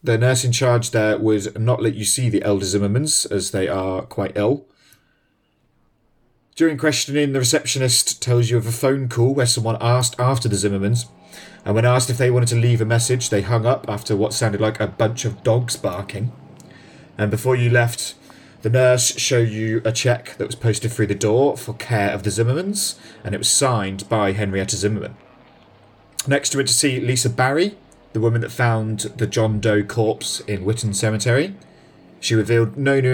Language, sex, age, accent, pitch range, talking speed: English, male, 30-49, British, 110-125 Hz, 190 wpm